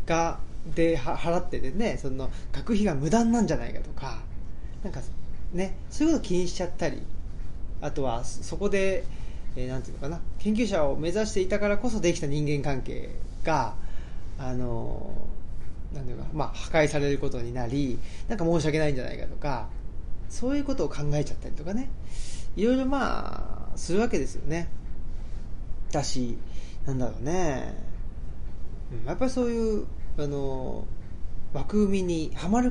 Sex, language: male, Japanese